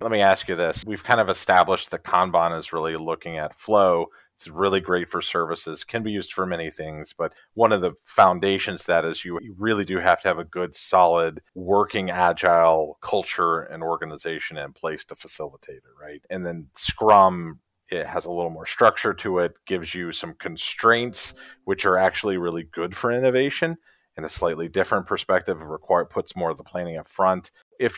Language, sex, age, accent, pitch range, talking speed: English, male, 30-49, American, 85-110 Hz, 195 wpm